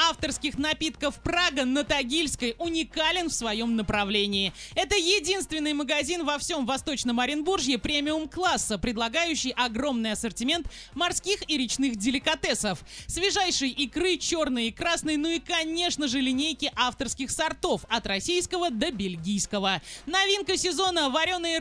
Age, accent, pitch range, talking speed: 30-49, native, 245-340 Hz, 120 wpm